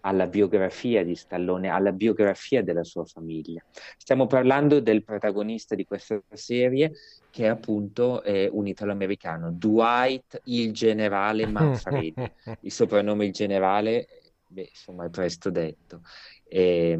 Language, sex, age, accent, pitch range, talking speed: Italian, male, 30-49, native, 90-110 Hz, 125 wpm